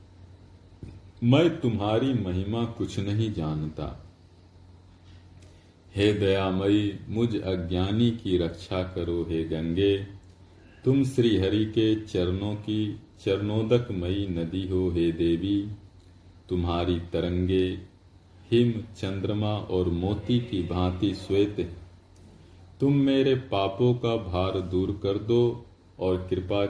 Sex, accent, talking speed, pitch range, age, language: male, native, 105 wpm, 90-105 Hz, 40-59, Hindi